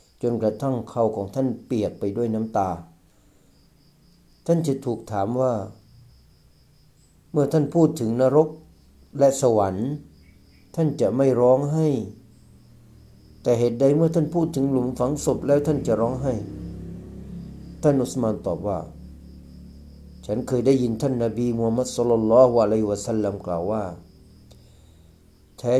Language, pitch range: Thai, 90-135 Hz